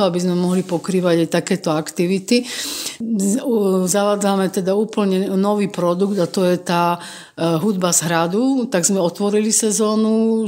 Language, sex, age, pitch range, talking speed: Slovak, female, 50-69, 175-200 Hz, 130 wpm